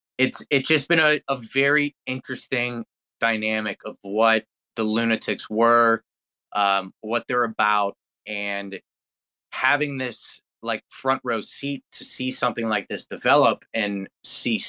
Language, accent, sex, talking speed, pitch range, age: English, American, male, 135 wpm, 105-120 Hz, 20-39